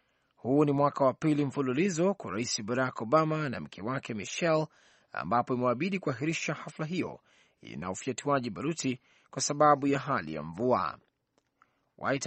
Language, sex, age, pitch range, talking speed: Swahili, male, 30-49, 130-155 Hz, 140 wpm